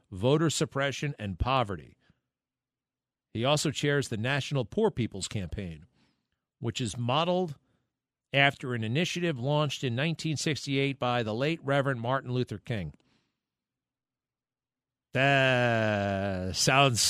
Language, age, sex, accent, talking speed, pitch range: English, 50-69, male, American, 105 wpm, 125-165 Hz